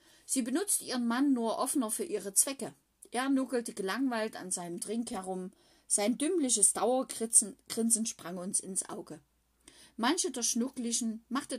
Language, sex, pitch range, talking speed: German, female, 190-260 Hz, 140 wpm